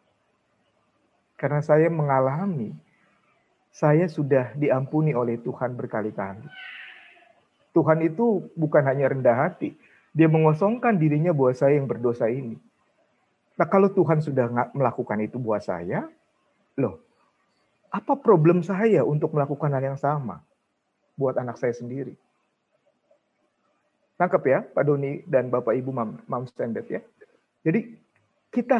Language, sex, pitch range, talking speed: Indonesian, male, 145-205 Hz, 115 wpm